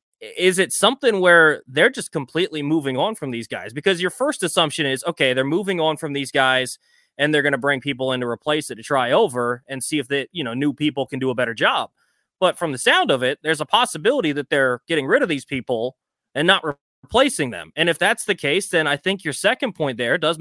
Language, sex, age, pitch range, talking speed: English, male, 20-39, 145-195 Hz, 240 wpm